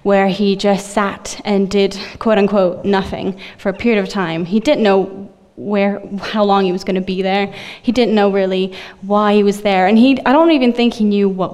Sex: female